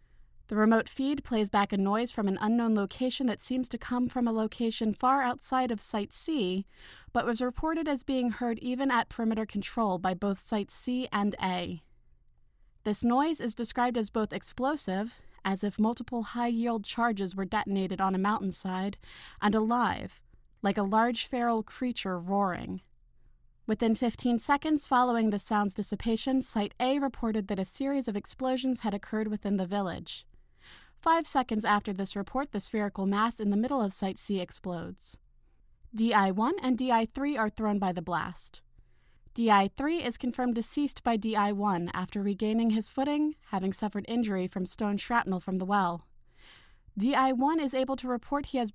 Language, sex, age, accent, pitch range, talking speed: English, female, 20-39, American, 200-250 Hz, 165 wpm